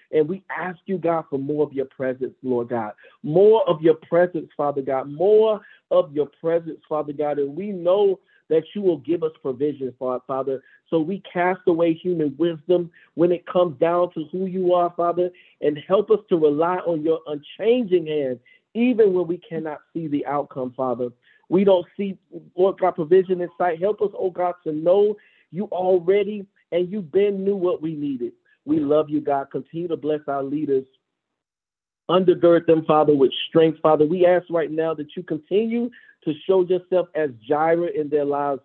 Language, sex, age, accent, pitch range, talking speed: English, male, 50-69, American, 150-185 Hz, 185 wpm